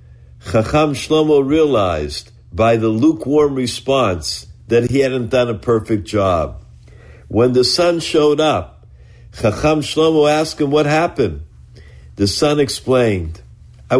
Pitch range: 110-150 Hz